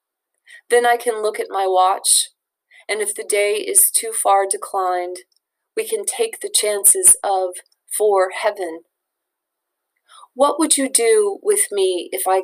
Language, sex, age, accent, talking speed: English, female, 30-49, American, 150 wpm